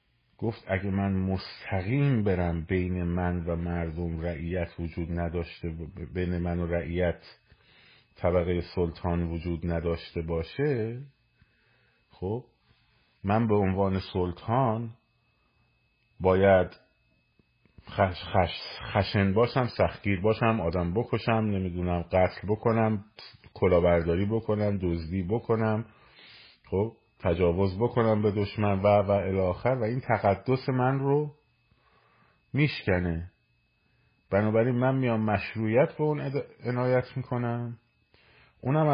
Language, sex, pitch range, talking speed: Persian, male, 95-120 Hz, 100 wpm